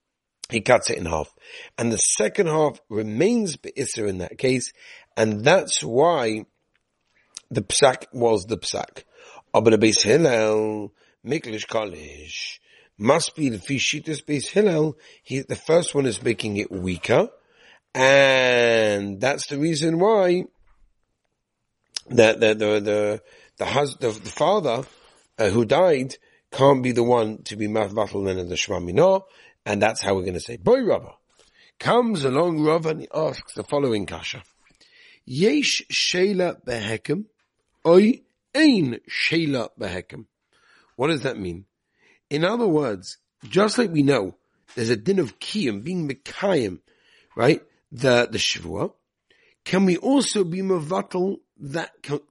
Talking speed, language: 130 wpm, English